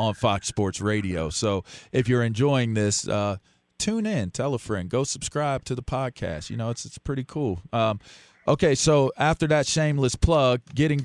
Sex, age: male, 40-59